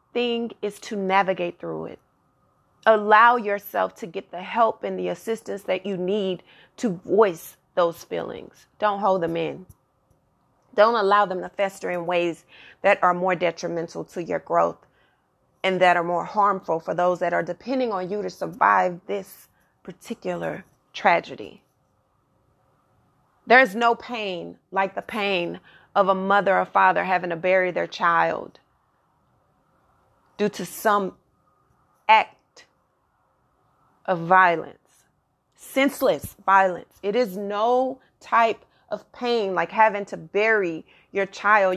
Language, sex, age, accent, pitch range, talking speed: English, female, 30-49, American, 175-220 Hz, 135 wpm